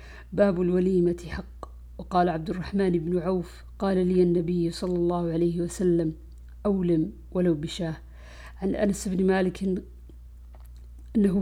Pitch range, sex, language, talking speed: 165-195 Hz, female, Arabic, 125 wpm